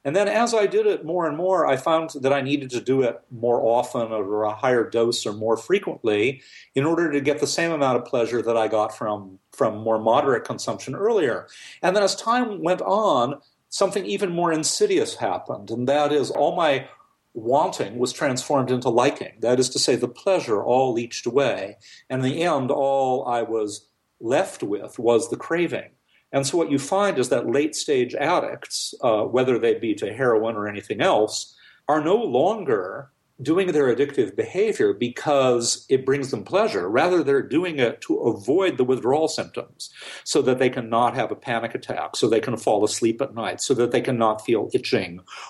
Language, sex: English, male